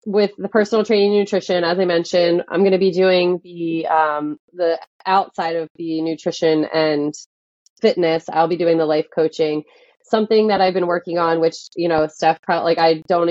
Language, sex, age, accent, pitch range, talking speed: English, female, 20-39, American, 155-185 Hz, 185 wpm